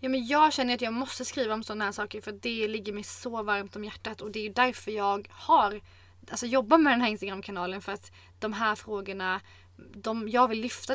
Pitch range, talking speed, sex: 200-240 Hz, 230 wpm, female